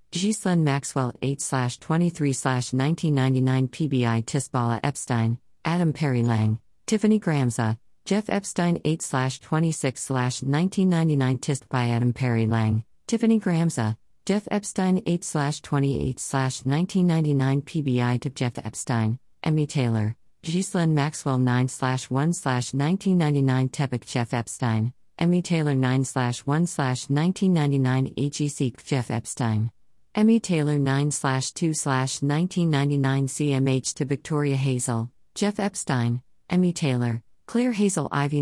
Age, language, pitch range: 50-69, English, 125-165 Hz